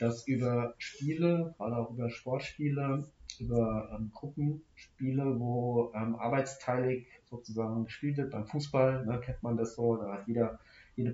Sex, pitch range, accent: male, 110-140 Hz, German